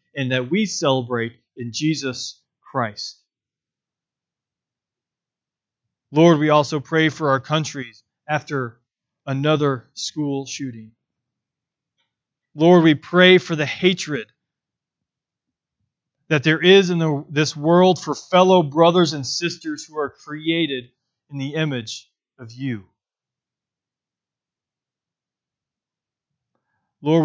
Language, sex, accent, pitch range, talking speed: English, male, American, 135-170 Hz, 95 wpm